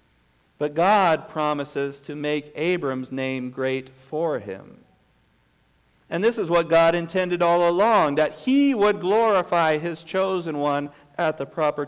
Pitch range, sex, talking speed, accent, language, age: 140-175 Hz, male, 140 wpm, American, English, 50-69